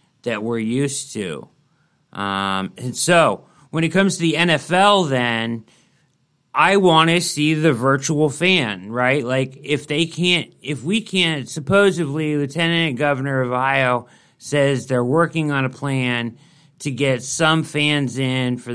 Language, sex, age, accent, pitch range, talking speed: English, male, 40-59, American, 115-150 Hz, 145 wpm